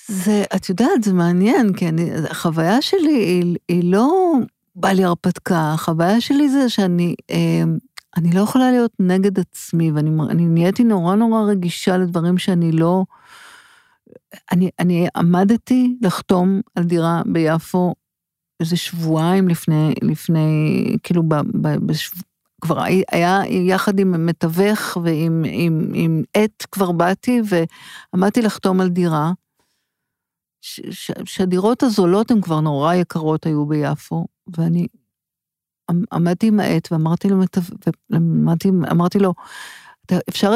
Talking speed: 115 wpm